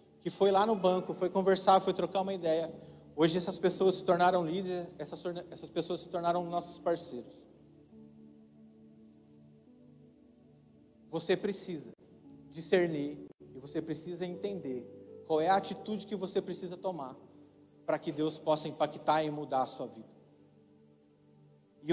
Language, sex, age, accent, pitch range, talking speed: Portuguese, male, 40-59, Brazilian, 140-190 Hz, 135 wpm